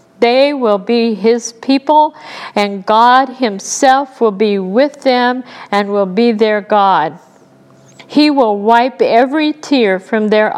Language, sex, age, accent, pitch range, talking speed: English, female, 50-69, American, 215-280 Hz, 135 wpm